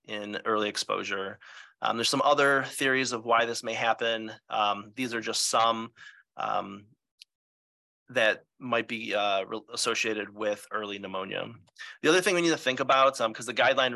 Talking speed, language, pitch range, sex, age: 170 wpm, English, 110-130 Hz, male, 30-49